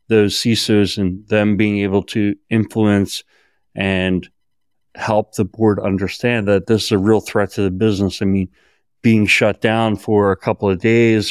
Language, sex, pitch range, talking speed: English, male, 95-110 Hz, 170 wpm